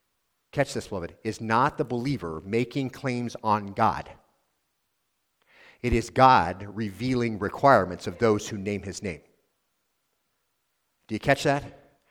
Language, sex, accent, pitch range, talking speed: English, male, American, 100-135 Hz, 130 wpm